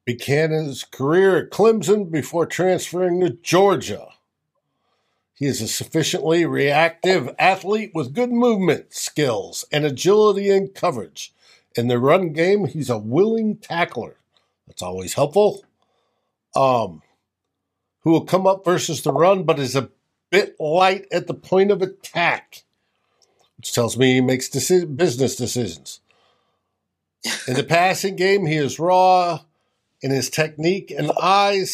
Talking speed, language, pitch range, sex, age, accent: 135 wpm, English, 130-175 Hz, male, 60-79, American